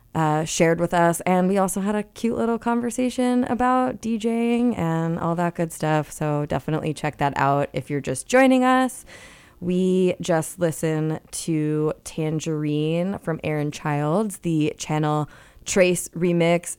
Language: English